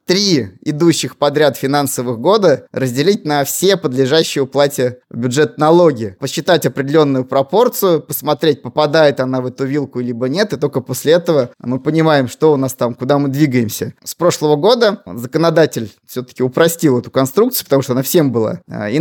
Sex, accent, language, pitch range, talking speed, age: male, native, Russian, 130-165 Hz, 155 wpm, 20-39